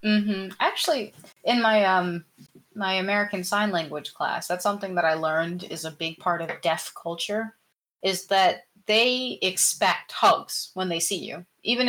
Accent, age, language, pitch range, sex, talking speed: American, 20-39, English, 175-215 Hz, female, 160 wpm